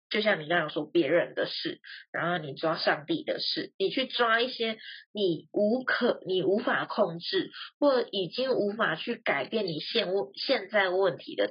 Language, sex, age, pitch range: Chinese, female, 20-39, 185-270 Hz